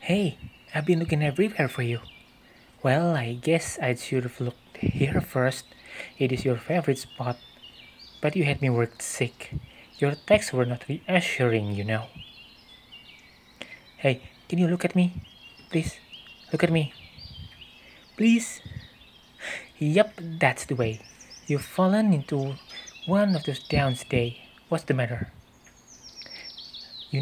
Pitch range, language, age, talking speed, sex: 120-165 Hz, Indonesian, 20-39, 130 wpm, male